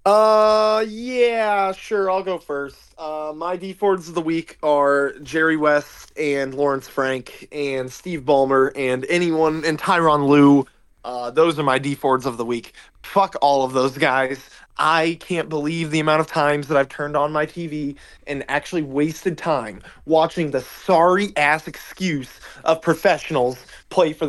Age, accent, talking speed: 20-39, American, 160 wpm